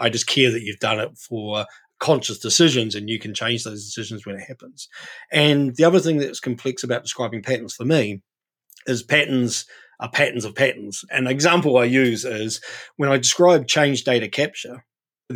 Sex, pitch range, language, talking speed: male, 115-135 Hz, English, 190 wpm